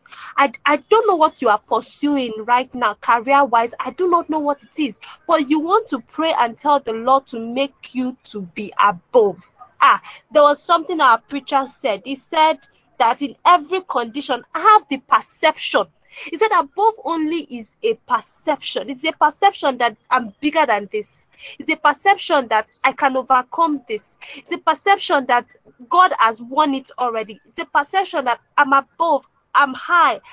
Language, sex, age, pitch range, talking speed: English, female, 20-39, 240-340 Hz, 180 wpm